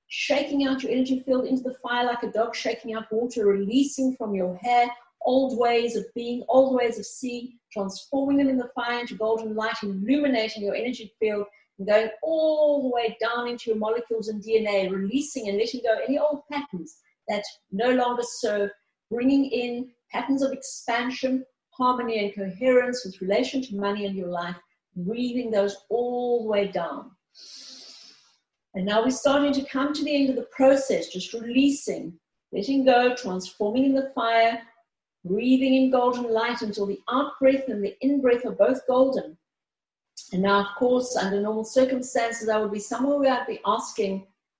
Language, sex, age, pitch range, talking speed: English, female, 40-59, 215-260 Hz, 175 wpm